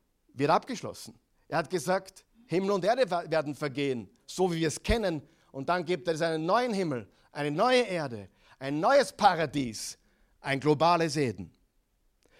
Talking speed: 150 wpm